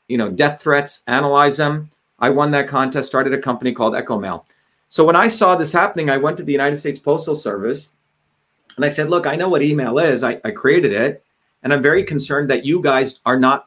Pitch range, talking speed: 140-170 Hz, 230 wpm